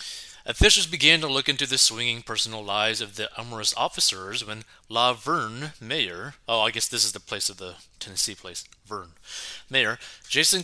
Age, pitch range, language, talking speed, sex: 30-49, 110-150 Hz, English, 175 wpm, male